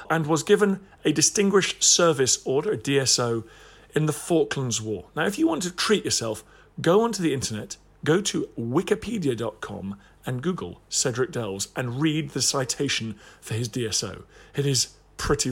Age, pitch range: 40-59, 115-160 Hz